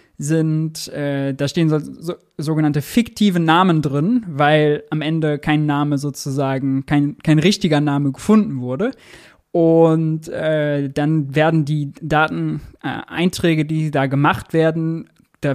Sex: male